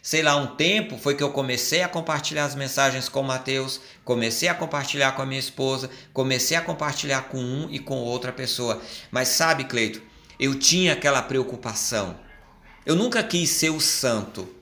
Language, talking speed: Portuguese, 180 wpm